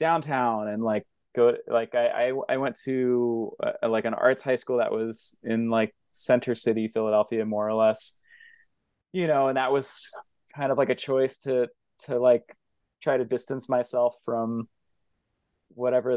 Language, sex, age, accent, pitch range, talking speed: English, male, 20-39, American, 115-150 Hz, 170 wpm